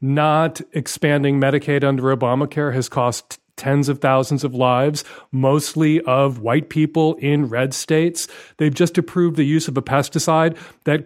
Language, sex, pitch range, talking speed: English, male, 140-175 Hz, 155 wpm